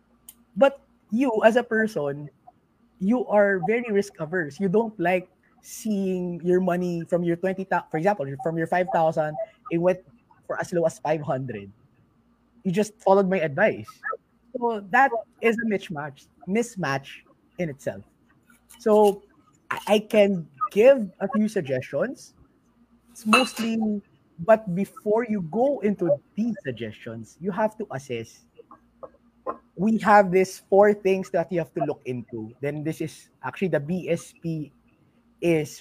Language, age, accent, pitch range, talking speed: English, 20-39, Filipino, 155-220 Hz, 140 wpm